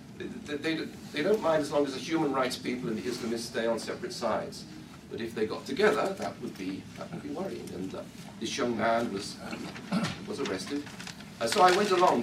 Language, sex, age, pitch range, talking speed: English, male, 40-59, 115-145 Hz, 220 wpm